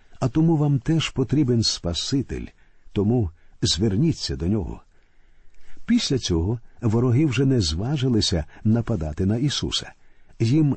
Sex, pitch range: male, 100-140 Hz